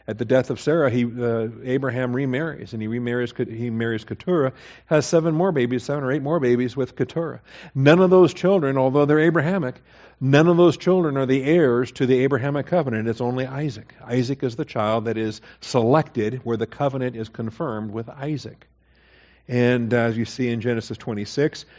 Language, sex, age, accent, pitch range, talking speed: English, male, 50-69, American, 115-140 Hz, 185 wpm